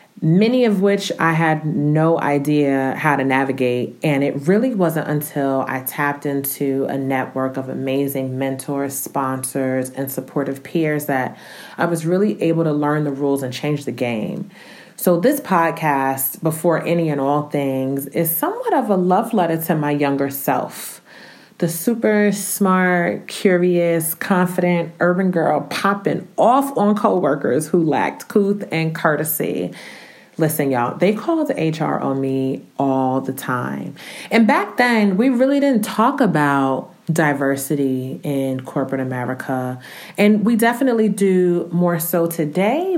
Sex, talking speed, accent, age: female, 145 wpm, American, 30-49